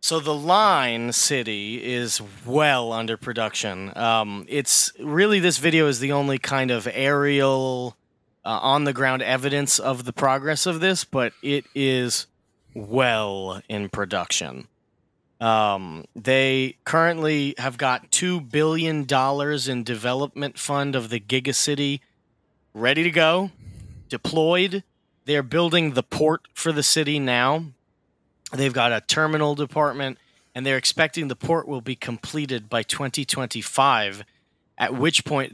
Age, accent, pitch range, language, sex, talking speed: 30-49, American, 120-150 Hz, English, male, 135 wpm